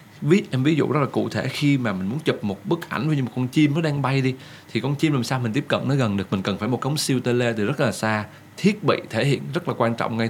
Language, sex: Vietnamese, male